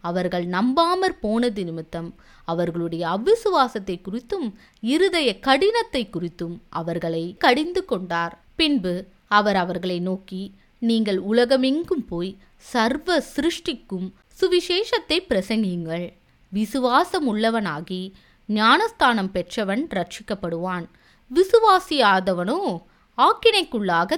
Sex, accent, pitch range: female, native, 180-265 Hz